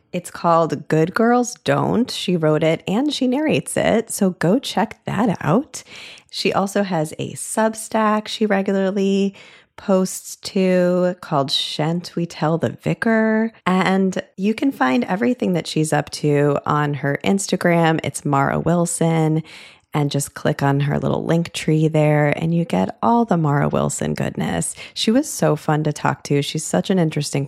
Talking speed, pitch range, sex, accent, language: 165 wpm, 150-200 Hz, female, American, English